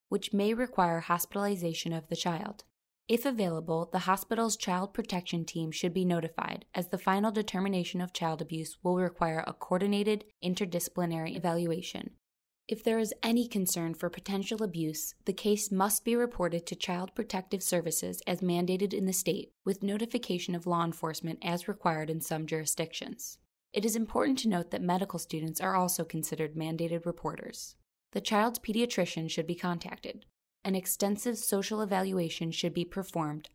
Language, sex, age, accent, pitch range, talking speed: English, female, 20-39, American, 165-200 Hz, 155 wpm